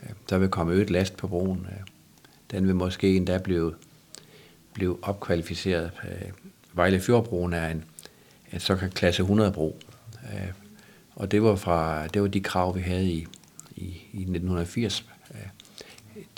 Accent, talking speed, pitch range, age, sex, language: native, 130 wpm, 85-100 Hz, 50-69, male, Danish